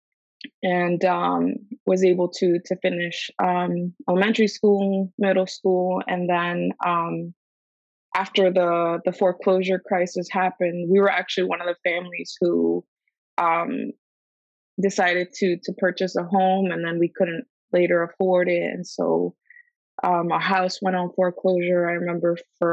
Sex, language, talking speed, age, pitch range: female, English, 145 wpm, 20-39, 175-200 Hz